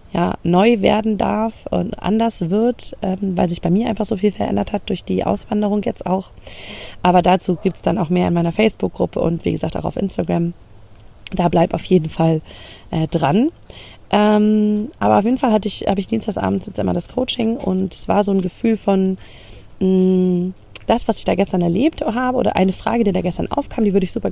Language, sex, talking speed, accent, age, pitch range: German, female, 210 wpm, German, 30-49, 170-215 Hz